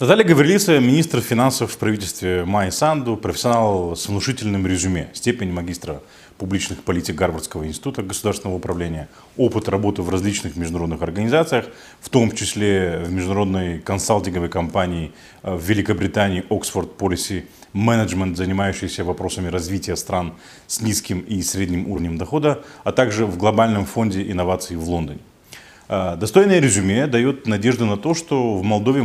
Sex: male